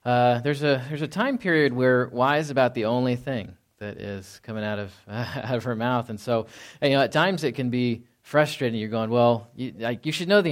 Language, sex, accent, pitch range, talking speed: English, male, American, 105-130 Hz, 245 wpm